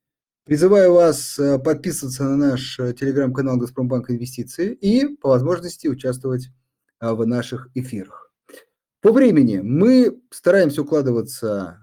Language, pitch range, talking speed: Russian, 120-165 Hz, 100 wpm